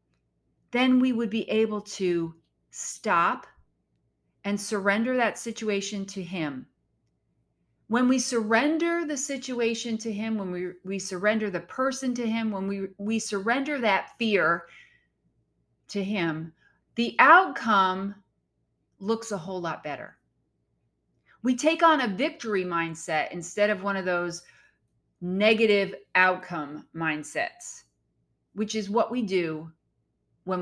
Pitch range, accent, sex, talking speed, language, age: 160-235 Hz, American, female, 125 wpm, English, 40-59